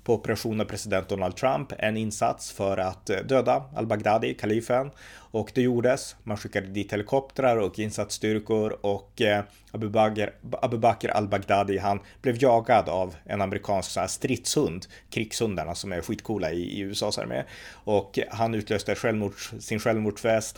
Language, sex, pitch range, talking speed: Swedish, male, 95-115 Hz, 150 wpm